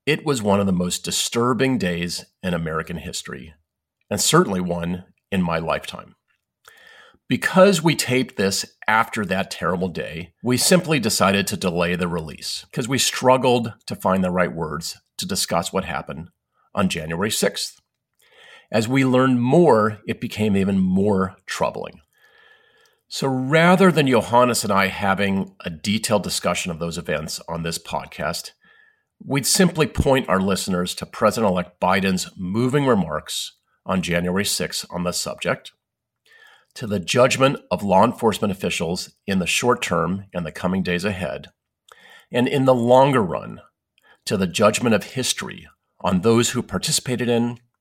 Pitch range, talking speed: 90-130 Hz, 150 wpm